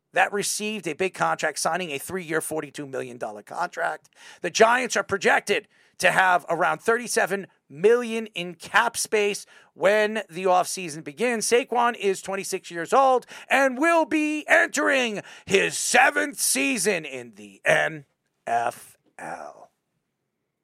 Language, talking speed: English, 120 wpm